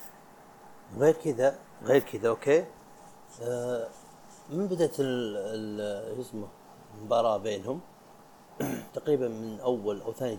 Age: 30-49